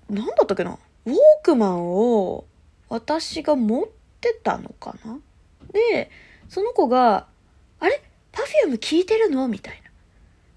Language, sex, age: Japanese, female, 20-39